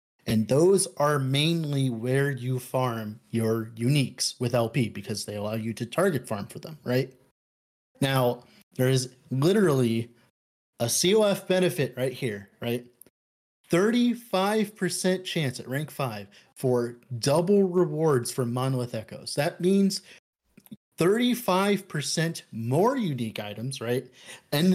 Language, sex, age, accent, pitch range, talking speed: English, male, 30-49, American, 120-170 Hz, 125 wpm